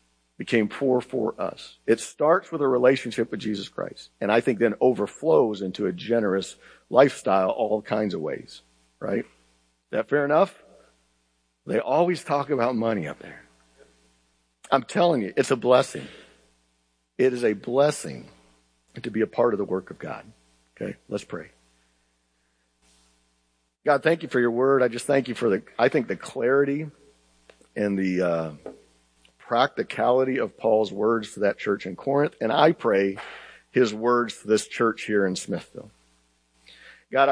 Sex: male